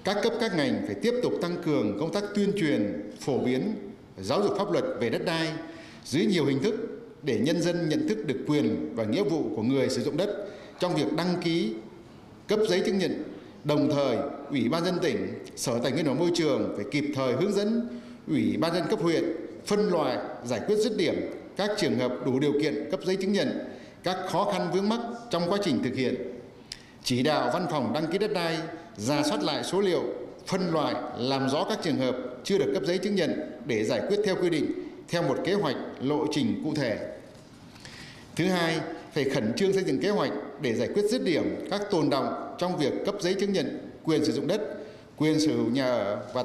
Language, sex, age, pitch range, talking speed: Vietnamese, male, 60-79, 150-205 Hz, 220 wpm